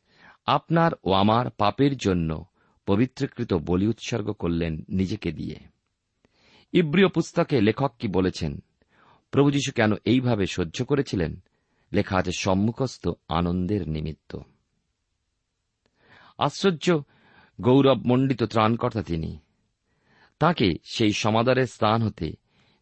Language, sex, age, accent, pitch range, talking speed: Bengali, male, 50-69, native, 90-125 Hz, 90 wpm